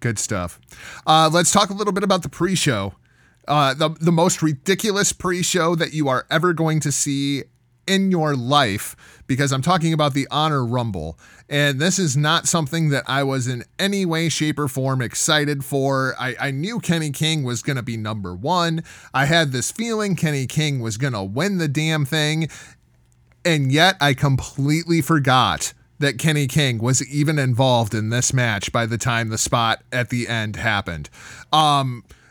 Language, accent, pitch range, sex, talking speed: English, American, 125-170 Hz, male, 180 wpm